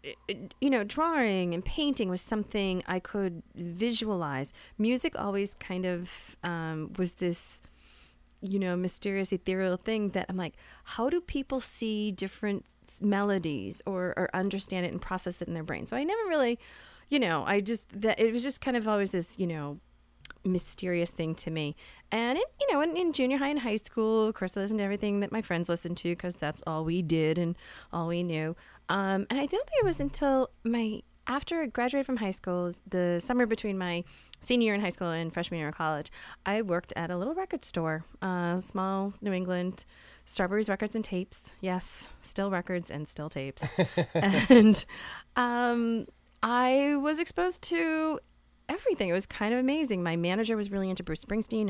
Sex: female